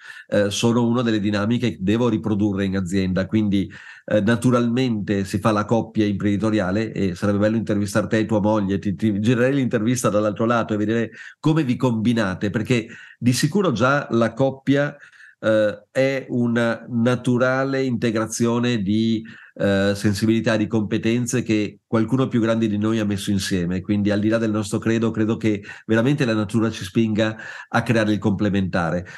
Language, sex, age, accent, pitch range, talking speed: Italian, male, 40-59, native, 105-130 Hz, 160 wpm